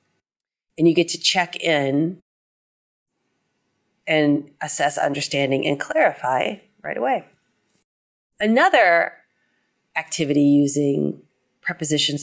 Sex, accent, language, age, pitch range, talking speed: female, American, English, 30-49, 145-180 Hz, 85 wpm